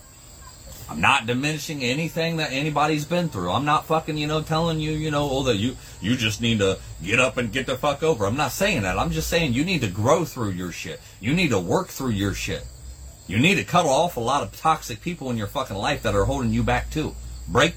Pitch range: 95-135 Hz